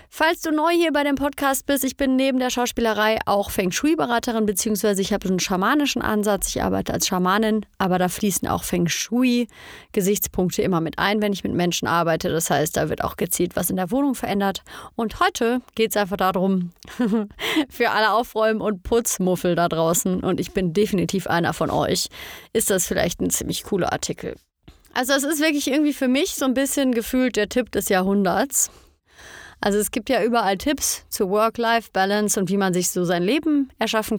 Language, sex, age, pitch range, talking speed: German, female, 30-49, 190-250 Hz, 190 wpm